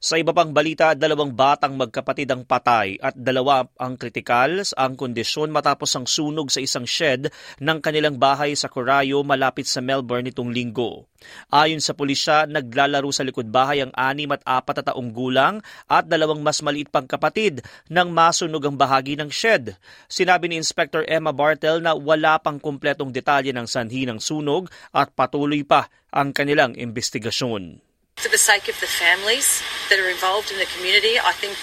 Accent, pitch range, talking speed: native, 135-160 Hz, 175 wpm